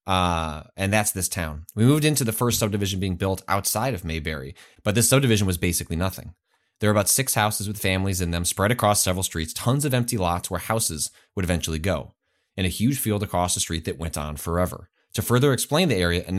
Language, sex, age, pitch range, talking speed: English, male, 30-49, 90-115 Hz, 225 wpm